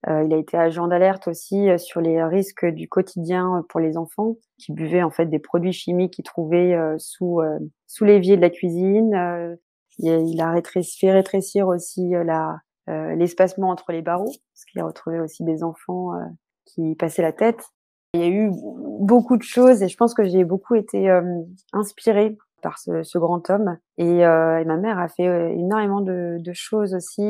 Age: 20-39